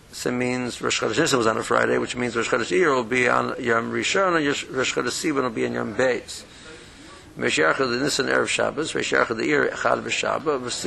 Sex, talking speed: male, 140 wpm